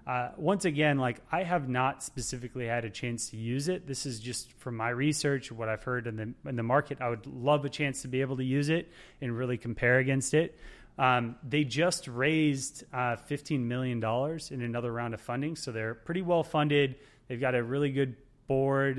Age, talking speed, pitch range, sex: 20-39, 210 wpm, 125-145 Hz, male